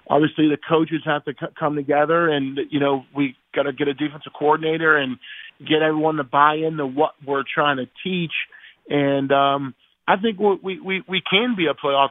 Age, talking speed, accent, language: 30-49, 200 wpm, American, English